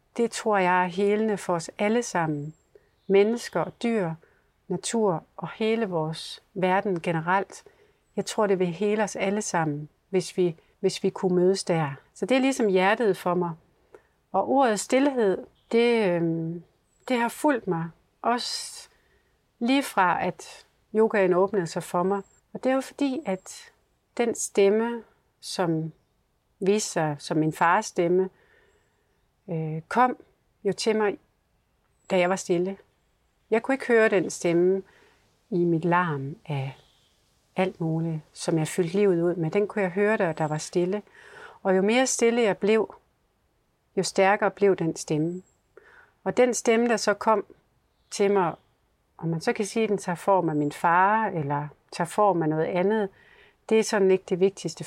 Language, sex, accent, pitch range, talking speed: Danish, female, native, 175-220 Hz, 160 wpm